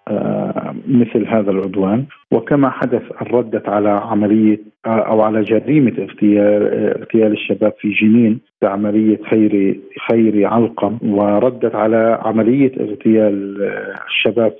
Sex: male